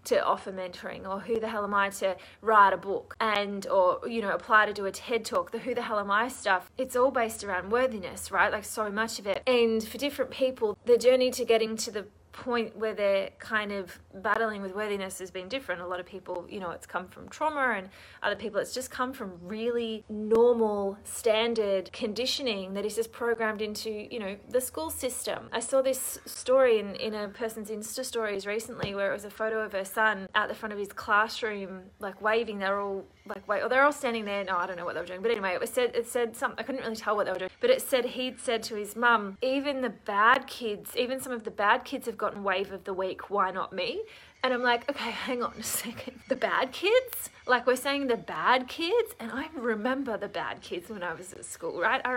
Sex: female